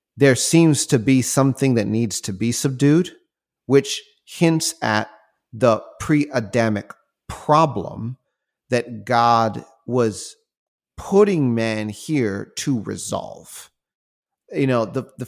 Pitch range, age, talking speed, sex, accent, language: 105-130 Hz, 30-49, 110 wpm, male, American, English